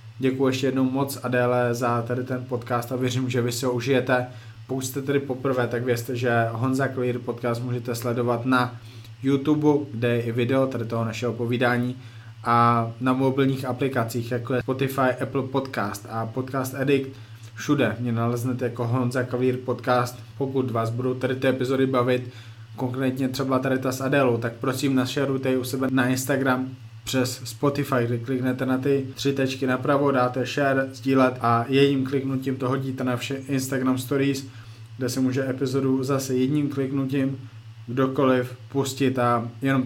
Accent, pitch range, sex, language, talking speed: native, 120-135 Hz, male, Czech, 165 wpm